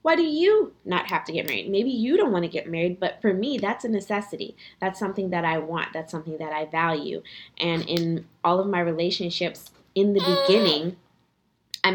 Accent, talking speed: American, 205 wpm